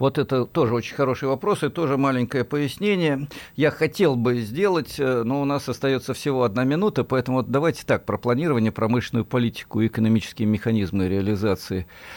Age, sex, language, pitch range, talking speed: 50-69, male, Russian, 100-125 Hz, 160 wpm